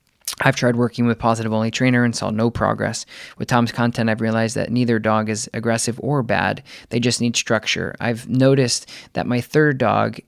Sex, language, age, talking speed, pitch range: male, English, 20-39, 195 wpm, 110-125 Hz